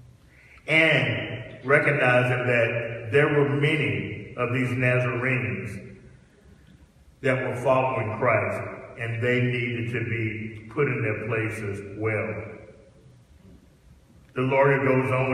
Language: English